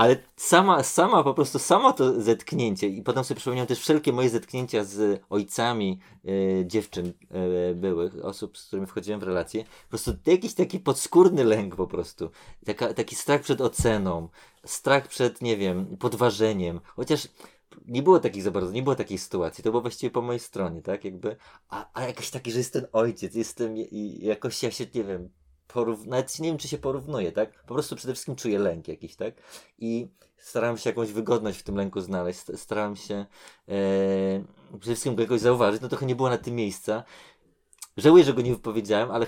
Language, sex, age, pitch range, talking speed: Polish, male, 30-49, 100-125 Hz, 190 wpm